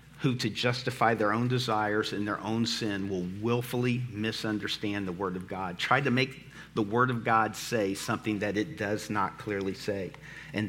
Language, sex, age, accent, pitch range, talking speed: English, male, 50-69, American, 110-130 Hz, 185 wpm